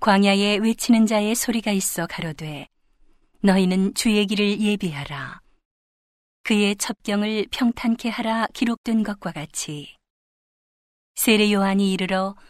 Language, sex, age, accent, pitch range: Korean, female, 40-59, native, 185-215 Hz